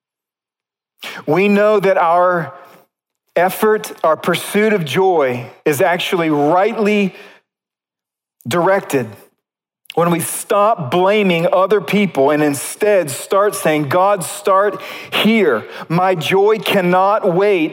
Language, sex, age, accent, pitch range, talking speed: English, male, 40-59, American, 160-200 Hz, 100 wpm